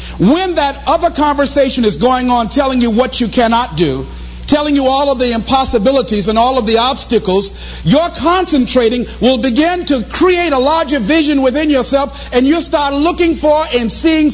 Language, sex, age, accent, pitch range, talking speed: English, male, 50-69, American, 250-345 Hz, 175 wpm